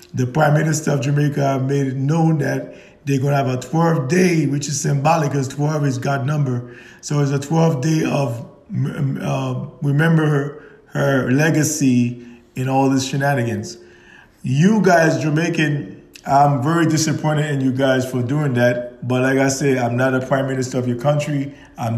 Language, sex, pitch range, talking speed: English, male, 135-165 Hz, 175 wpm